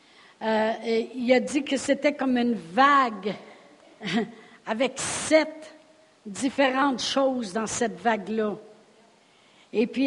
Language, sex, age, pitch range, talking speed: French, female, 60-79, 245-290 Hz, 115 wpm